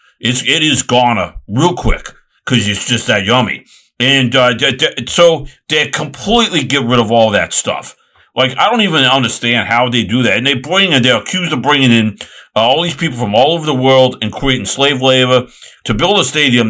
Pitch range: 105-130 Hz